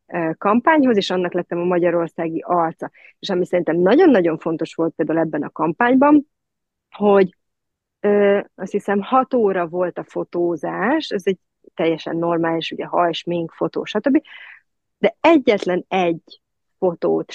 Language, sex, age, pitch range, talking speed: Hungarian, female, 30-49, 170-210 Hz, 130 wpm